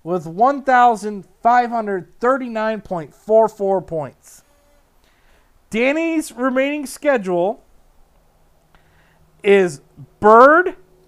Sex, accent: male, American